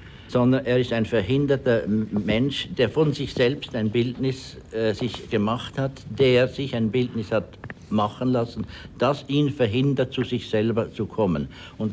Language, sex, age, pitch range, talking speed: German, male, 60-79, 110-140 Hz, 160 wpm